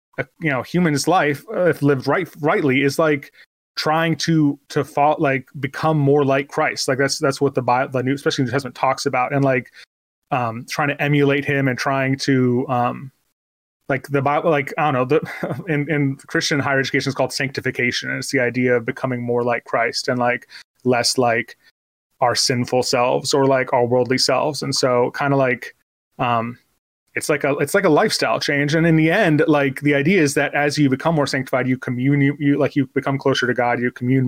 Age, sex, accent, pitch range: 20-39, male, American, 130-150 Hz